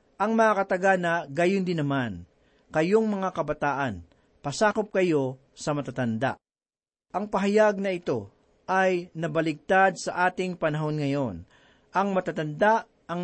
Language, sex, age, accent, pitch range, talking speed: Filipino, male, 40-59, native, 155-195 Hz, 110 wpm